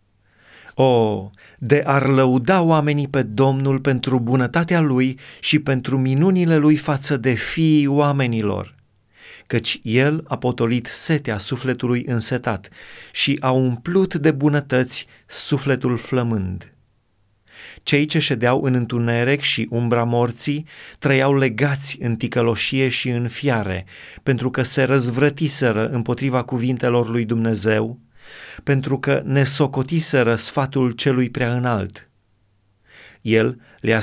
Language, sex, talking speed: Romanian, male, 115 wpm